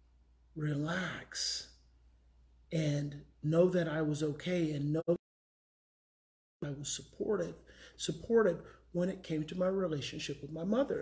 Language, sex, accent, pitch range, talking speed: English, male, American, 155-195 Hz, 125 wpm